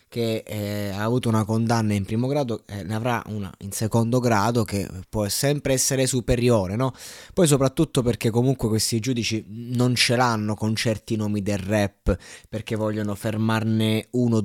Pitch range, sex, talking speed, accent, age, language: 105-120 Hz, male, 165 wpm, native, 20-39, Italian